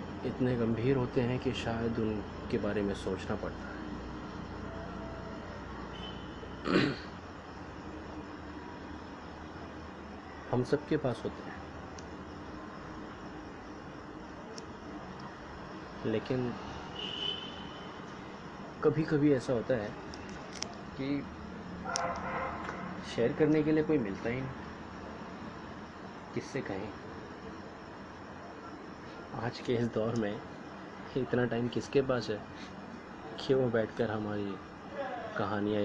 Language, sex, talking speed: Hindi, male, 80 wpm